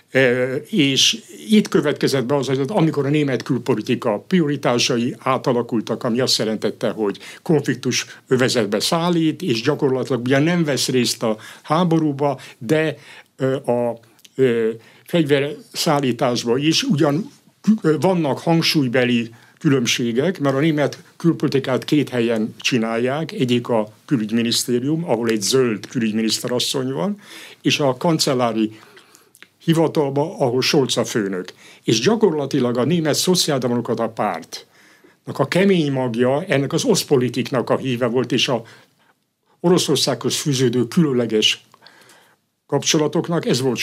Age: 60-79